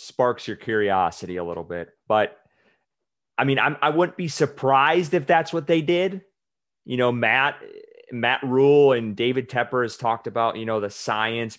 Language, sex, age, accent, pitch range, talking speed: English, male, 30-49, American, 110-130 Hz, 175 wpm